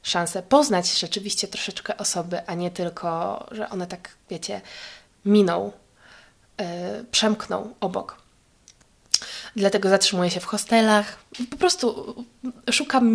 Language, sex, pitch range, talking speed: Polish, female, 180-235 Hz, 105 wpm